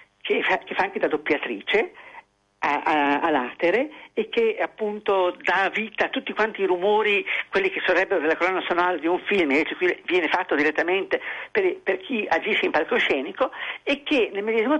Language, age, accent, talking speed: Italian, 50-69, native, 165 wpm